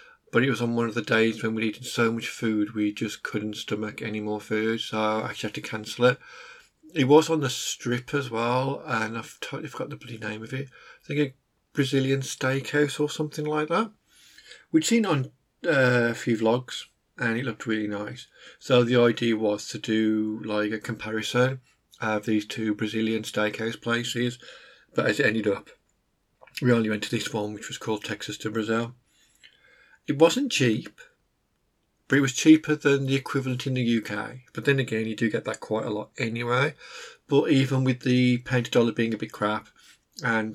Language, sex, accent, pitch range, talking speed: English, male, British, 110-135 Hz, 195 wpm